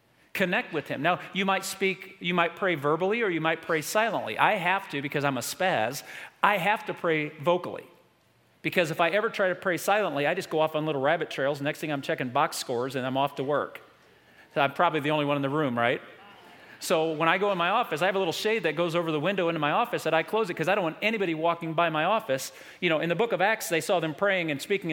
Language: English